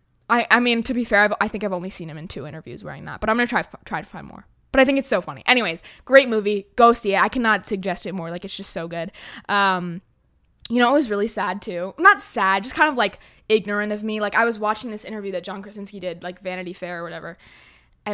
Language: English